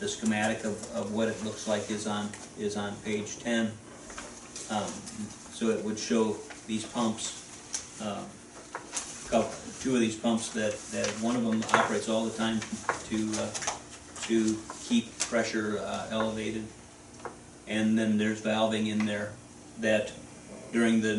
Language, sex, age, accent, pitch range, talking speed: English, male, 40-59, American, 75-110 Hz, 145 wpm